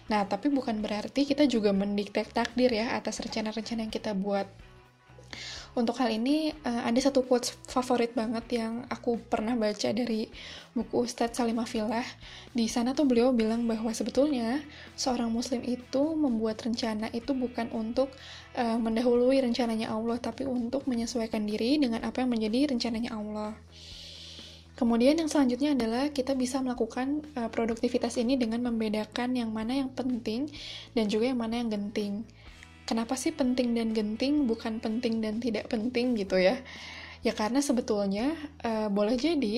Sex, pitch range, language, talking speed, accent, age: female, 220-255 Hz, Indonesian, 145 wpm, native, 10-29